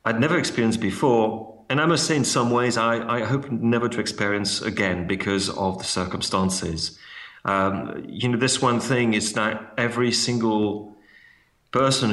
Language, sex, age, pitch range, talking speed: English, male, 40-59, 100-115 Hz, 165 wpm